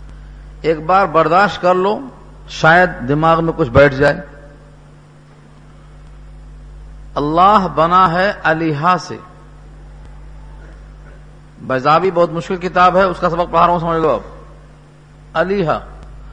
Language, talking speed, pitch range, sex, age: Urdu, 115 wpm, 145-185 Hz, male, 50-69